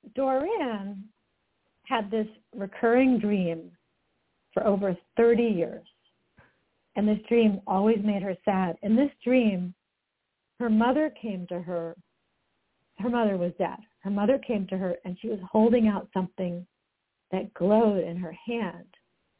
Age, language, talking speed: 50-69, English, 135 wpm